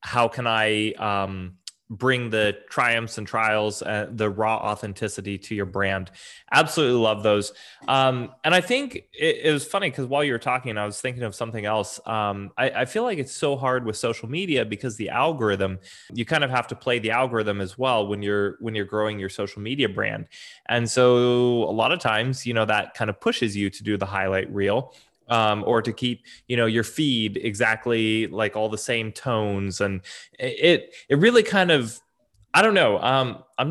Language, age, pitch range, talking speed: English, 20-39, 105-130 Hz, 205 wpm